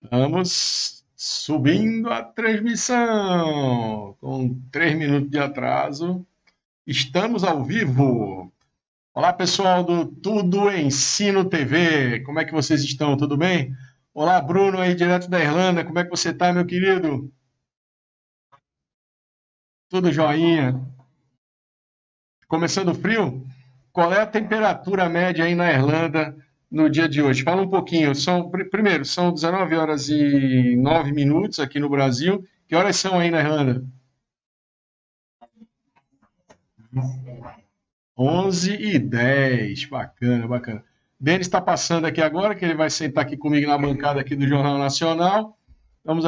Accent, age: Brazilian, 60-79